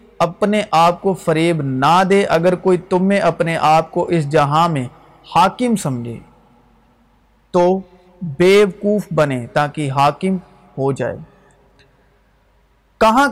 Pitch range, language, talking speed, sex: 150-190 Hz, Urdu, 115 wpm, male